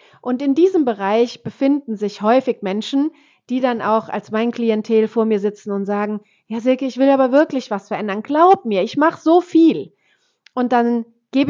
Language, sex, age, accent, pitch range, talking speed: German, female, 30-49, German, 225-300 Hz, 190 wpm